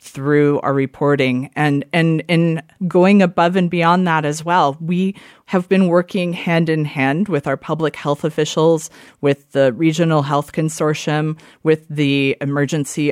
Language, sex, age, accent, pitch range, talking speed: English, female, 30-49, American, 145-175 Hz, 155 wpm